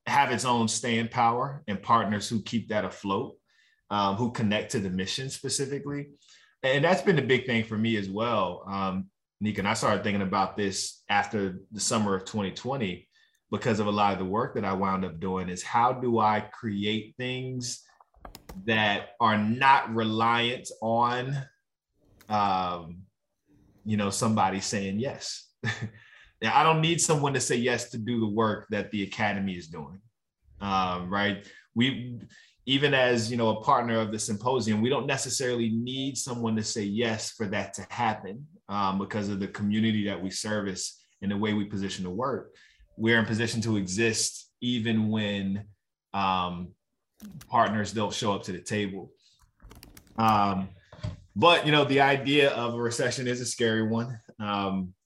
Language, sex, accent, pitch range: English, male, American, 100-120 Hz